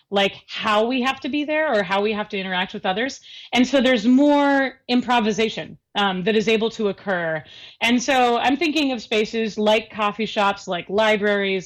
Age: 30-49